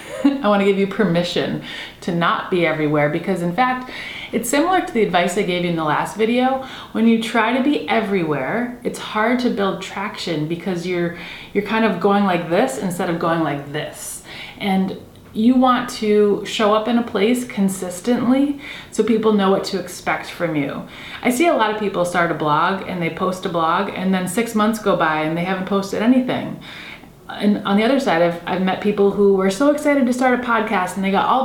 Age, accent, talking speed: 30-49, American, 215 wpm